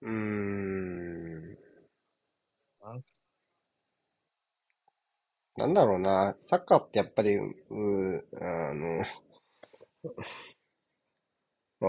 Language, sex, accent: Japanese, male, native